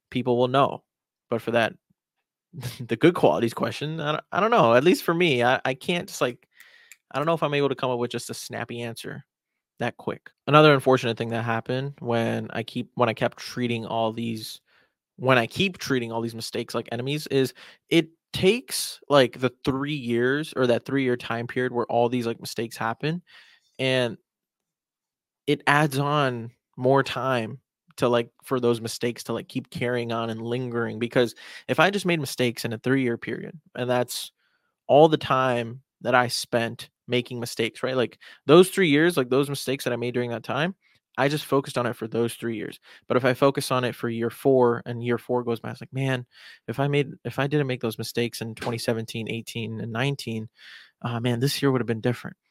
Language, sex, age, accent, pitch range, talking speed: English, male, 20-39, American, 115-140 Hz, 210 wpm